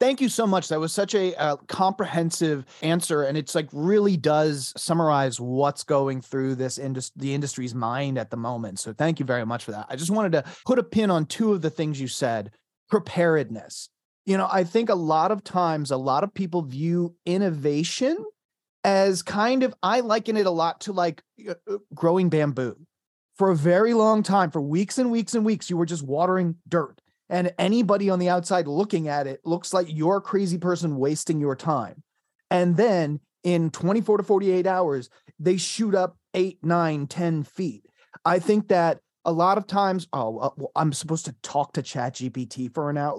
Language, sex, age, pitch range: English, male, 30-49, 145-195 Hz